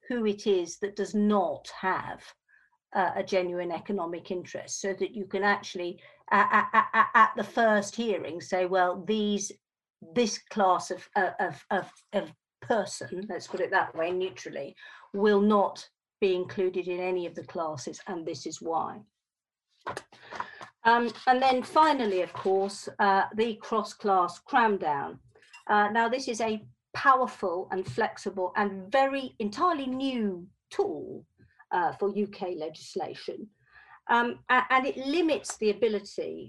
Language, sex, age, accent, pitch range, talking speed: English, female, 50-69, British, 185-230 Hz, 145 wpm